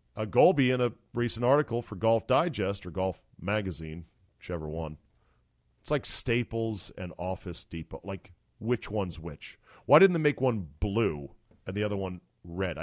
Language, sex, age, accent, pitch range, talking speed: English, male, 40-59, American, 100-135 Hz, 165 wpm